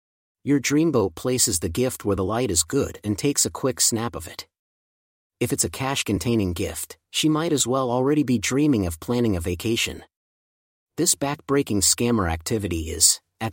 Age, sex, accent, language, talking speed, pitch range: 40-59, male, American, English, 175 wpm, 100-135 Hz